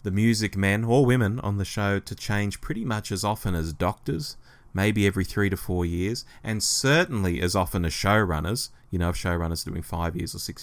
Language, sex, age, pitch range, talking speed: English, male, 30-49, 95-135 Hz, 215 wpm